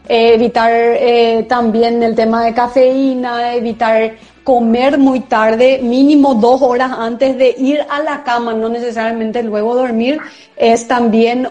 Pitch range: 235-270 Hz